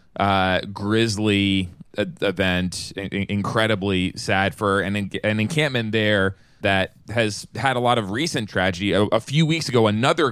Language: English